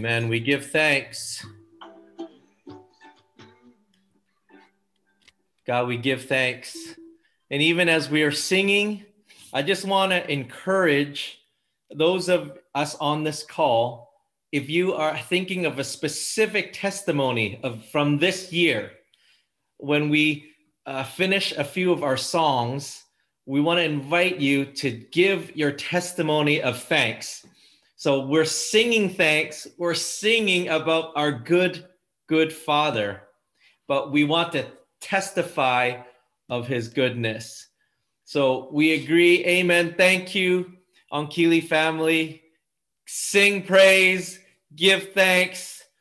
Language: English